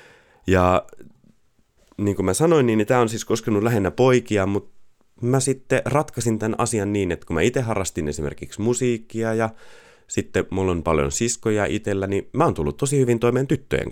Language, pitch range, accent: Finnish, 90-120 Hz, native